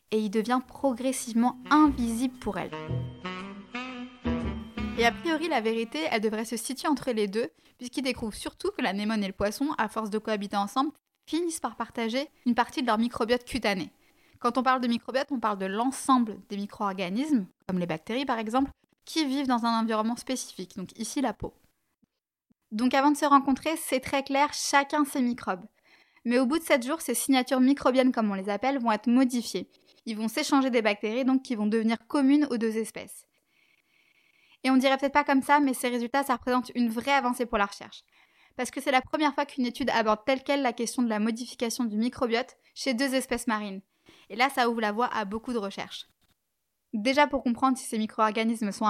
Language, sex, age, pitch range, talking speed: French, female, 20-39, 225-275 Hz, 200 wpm